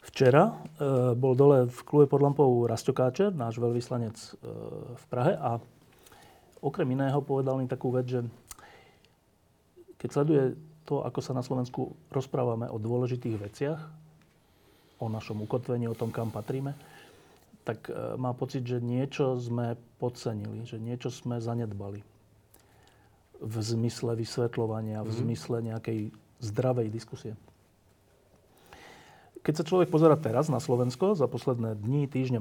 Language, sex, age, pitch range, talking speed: Slovak, male, 40-59, 115-145 Hz, 130 wpm